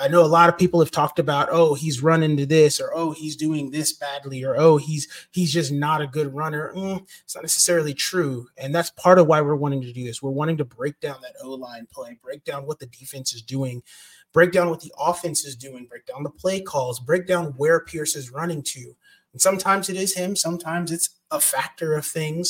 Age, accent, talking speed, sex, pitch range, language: 30-49, American, 235 wpm, male, 140-170 Hz, English